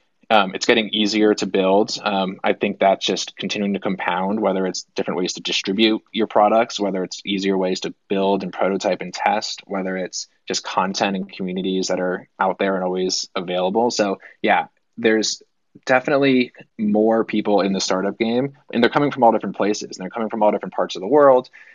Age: 20-39